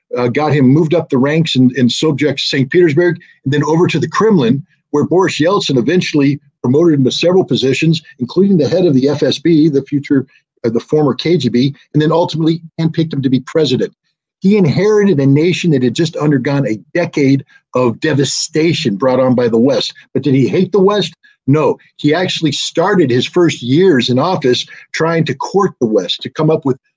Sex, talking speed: male, 195 wpm